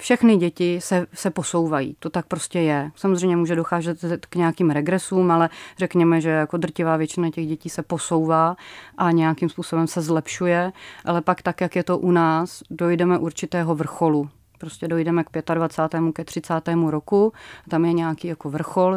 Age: 30-49